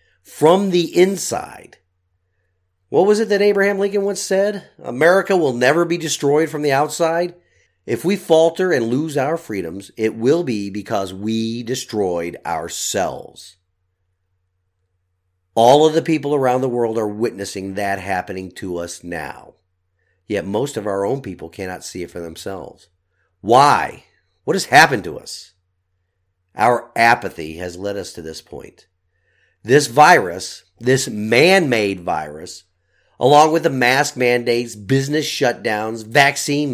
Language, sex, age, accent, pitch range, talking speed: English, male, 50-69, American, 90-150 Hz, 140 wpm